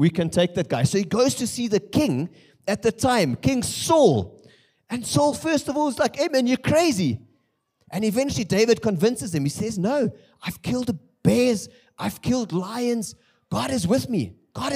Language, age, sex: English, 30-49, male